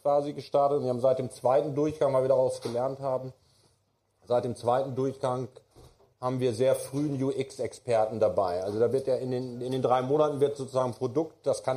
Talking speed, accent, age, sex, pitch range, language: 205 wpm, German, 40-59, male, 120-140 Hz, German